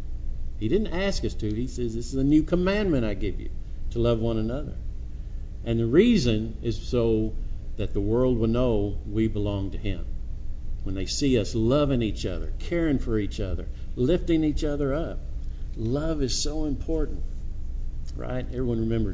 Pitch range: 95-135 Hz